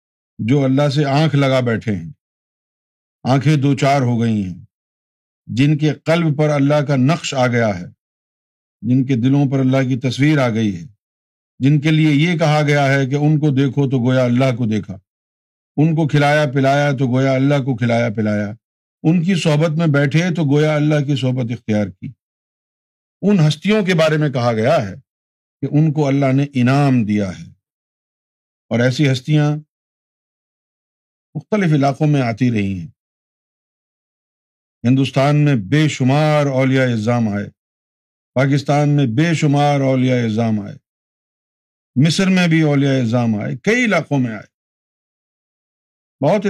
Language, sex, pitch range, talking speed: Urdu, male, 115-150 Hz, 155 wpm